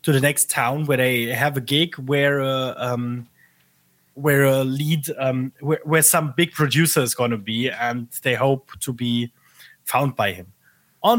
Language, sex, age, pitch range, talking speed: English, male, 20-39, 130-160 Hz, 180 wpm